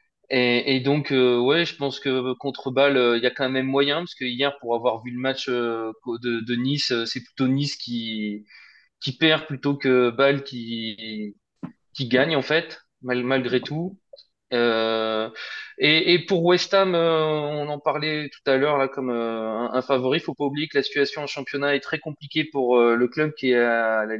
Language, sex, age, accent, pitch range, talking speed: French, male, 20-39, French, 120-140 Hz, 215 wpm